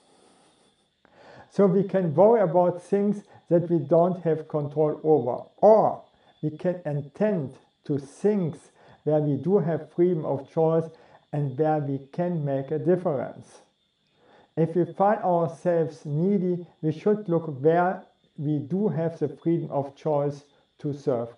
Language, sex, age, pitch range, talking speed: English, male, 50-69, 150-180 Hz, 140 wpm